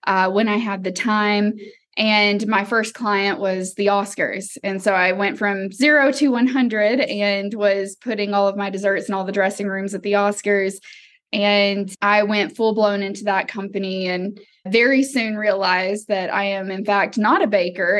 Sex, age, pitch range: female, 20-39, 195-235 Hz